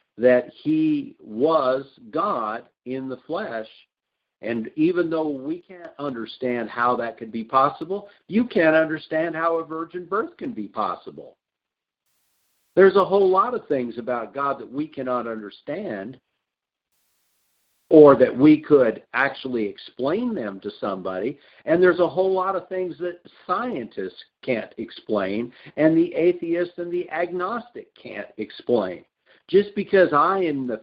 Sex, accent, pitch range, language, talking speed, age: male, American, 130-200 Hz, English, 140 wpm, 50-69